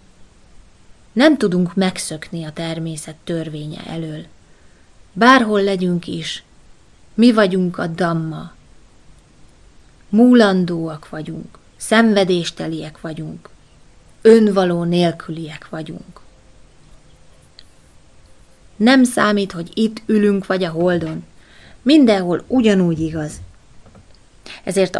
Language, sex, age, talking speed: Hungarian, female, 20-39, 80 wpm